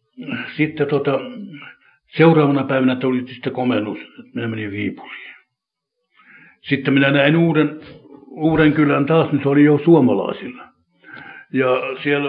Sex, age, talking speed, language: male, 60-79, 110 wpm, Finnish